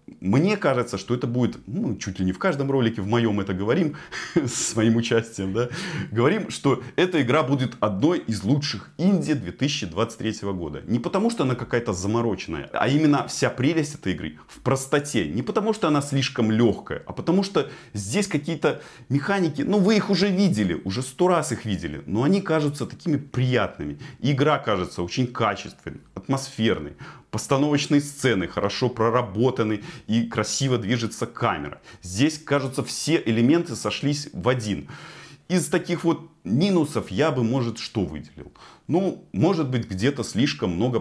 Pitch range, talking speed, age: 100-145 Hz, 155 wpm, 30-49